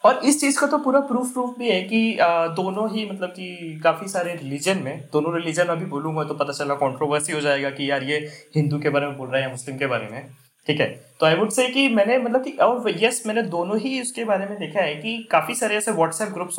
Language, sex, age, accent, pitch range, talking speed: Hindi, male, 20-39, native, 160-230 Hz, 255 wpm